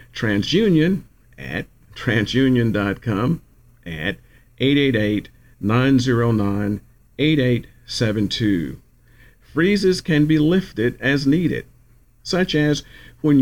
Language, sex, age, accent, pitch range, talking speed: English, male, 50-69, American, 115-140 Hz, 65 wpm